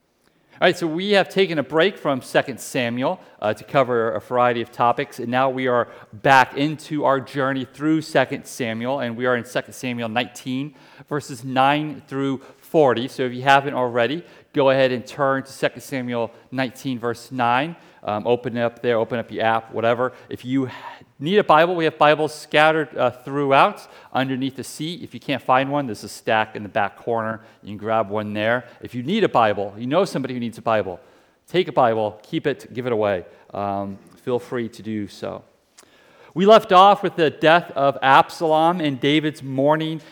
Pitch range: 120-155 Hz